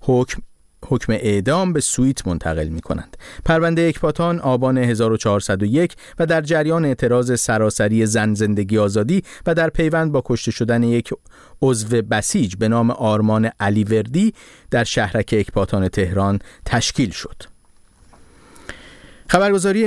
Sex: male